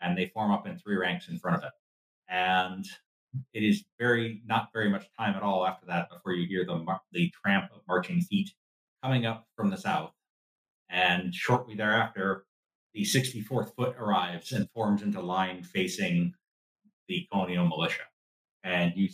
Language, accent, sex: English, American, male